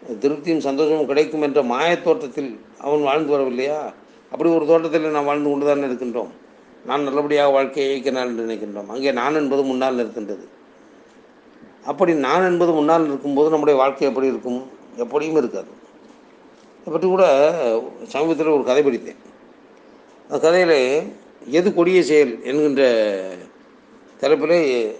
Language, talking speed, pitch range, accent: Tamil, 125 wpm, 130-155 Hz, native